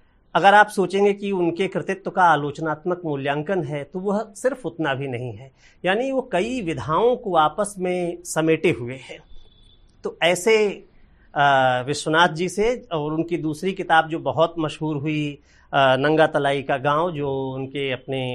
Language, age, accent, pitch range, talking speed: Hindi, 50-69, native, 135-185 Hz, 155 wpm